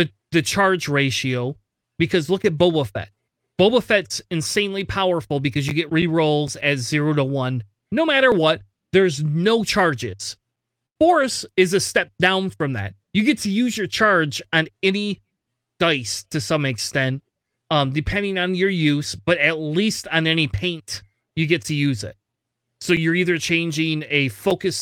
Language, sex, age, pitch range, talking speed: English, male, 30-49, 125-185 Hz, 160 wpm